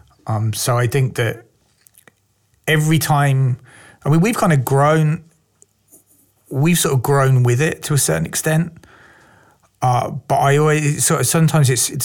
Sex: male